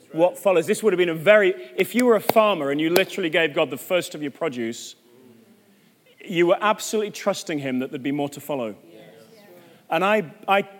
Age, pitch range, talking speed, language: 30-49, 130-180 Hz, 205 wpm, English